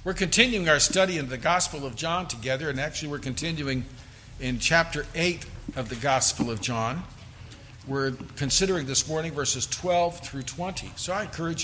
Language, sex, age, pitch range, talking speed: English, male, 50-69, 115-160 Hz, 170 wpm